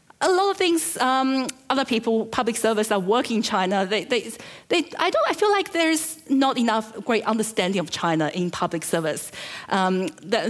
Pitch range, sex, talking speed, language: 170-230 Hz, female, 190 wpm, English